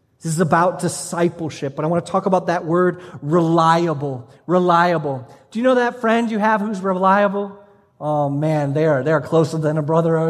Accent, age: American, 30-49